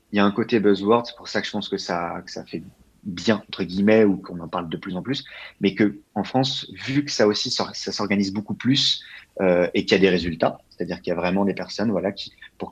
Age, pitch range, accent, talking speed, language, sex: 30-49, 95-115 Hz, French, 270 wpm, French, male